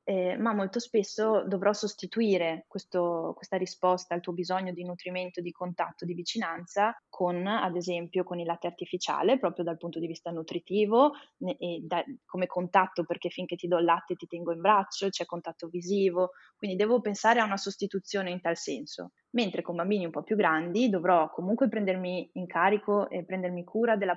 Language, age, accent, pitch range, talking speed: Italian, 20-39, native, 175-200 Hz, 185 wpm